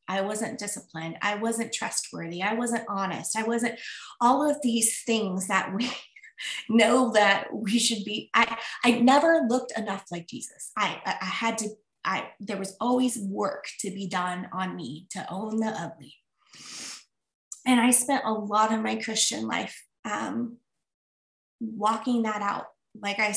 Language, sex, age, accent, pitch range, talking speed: English, female, 20-39, American, 195-230 Hz, 160 wpm